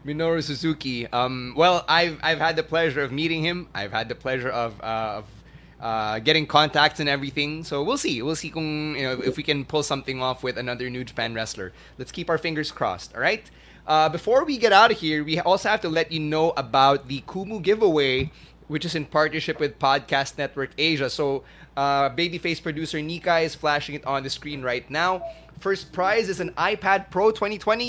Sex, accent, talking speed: male, Filipino, 195 wpm